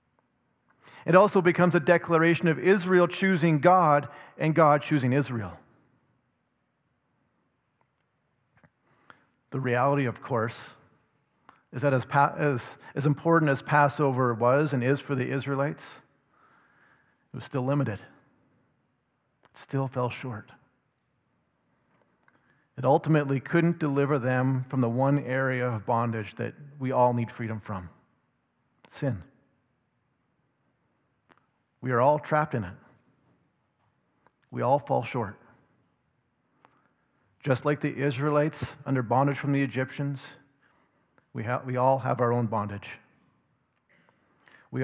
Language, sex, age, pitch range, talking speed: English, male, 40-59, 125-155 Hz, 115 wpm